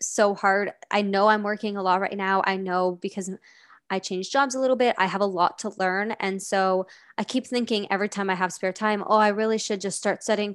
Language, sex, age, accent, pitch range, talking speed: English, female, 20-39, American, 185-215 Hz, 245 wpm